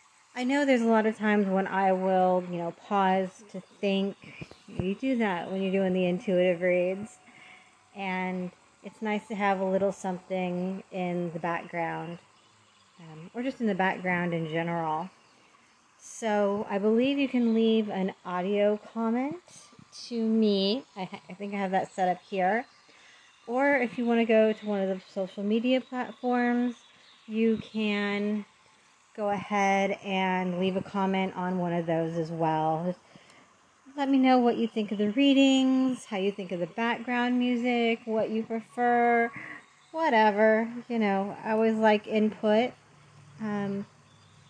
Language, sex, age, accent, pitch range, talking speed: English, female, 30-49, American, 185-230 Hz, 155 wpm